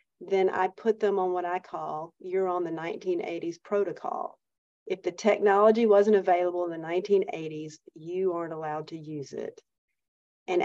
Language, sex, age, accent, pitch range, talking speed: English, female, 40-59, American, 170-215 Hz, 160 wpm